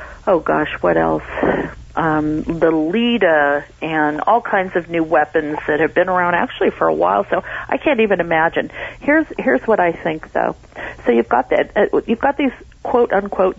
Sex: female